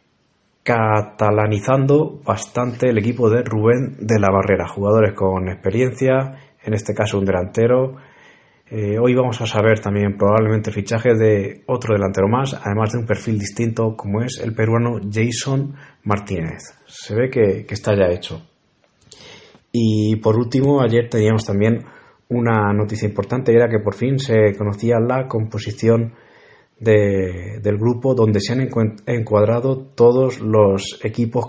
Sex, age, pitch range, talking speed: male, 30-49, 100-120 Hz, 140 wpm